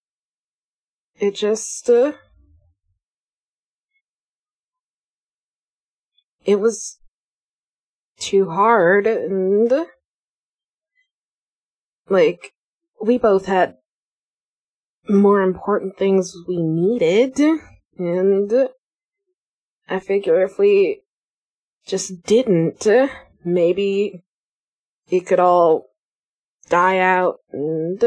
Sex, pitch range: female, 170-250 Hz